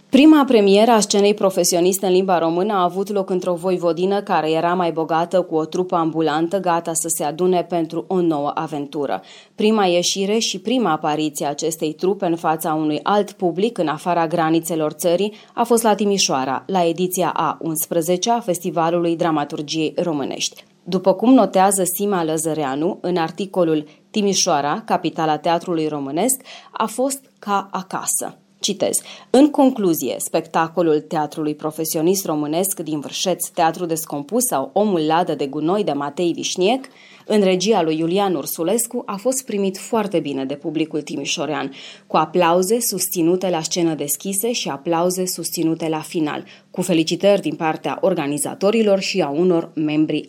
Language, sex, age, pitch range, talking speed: Romanian, female, 30-49, 160-195 Hz, 145 wpm